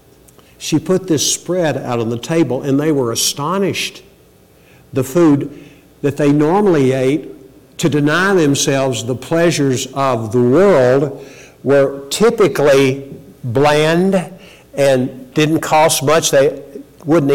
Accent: American